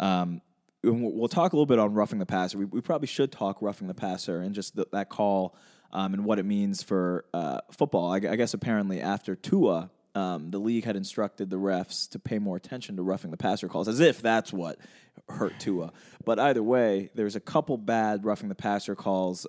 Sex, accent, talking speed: male, American, 220 wpm